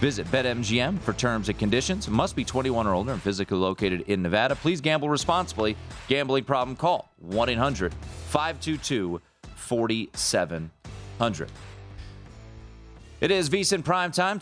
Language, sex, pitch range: English, male, 110-155 Hz